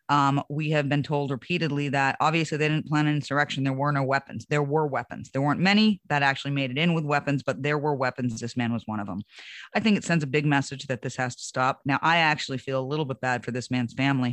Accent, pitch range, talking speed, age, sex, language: American, 130-150 Hz, 270 wpm, 30-49, female, English